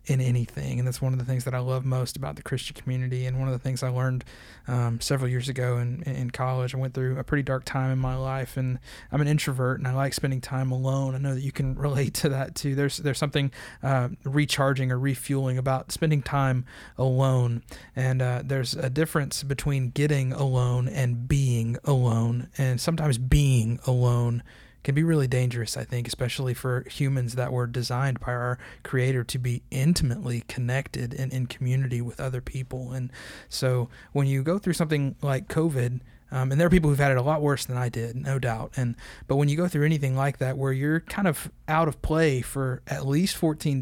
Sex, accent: male, American